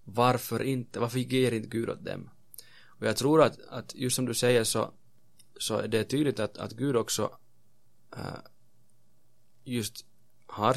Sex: male